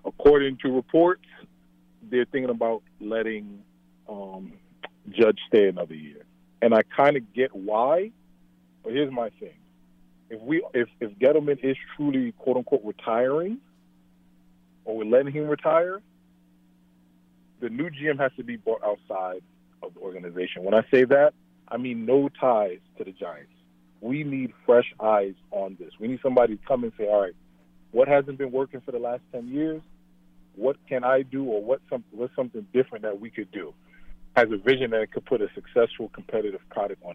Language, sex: English, male